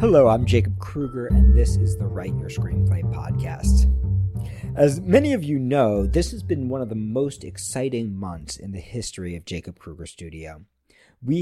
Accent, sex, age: American, male, 40-59